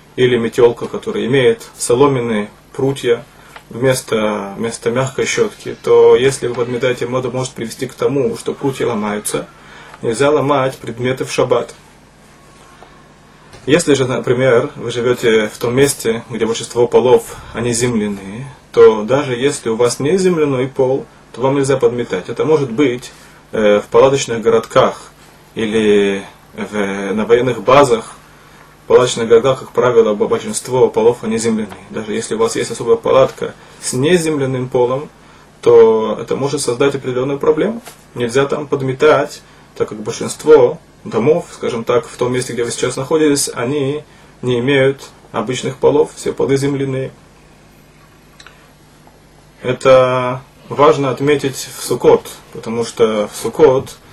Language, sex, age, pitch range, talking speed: Russian, male, 20-39, 120-155 Hz, 130 wpm